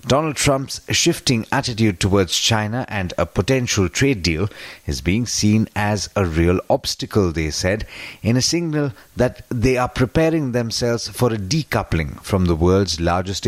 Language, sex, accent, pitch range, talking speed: English, male, Indian, 95-125 Hz, 155 wpm